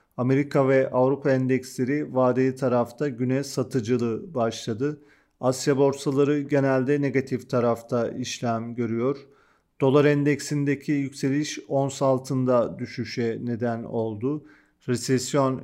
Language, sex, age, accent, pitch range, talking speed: Turkish, male, 40-59, native, 120-140 Hz, 95 wpm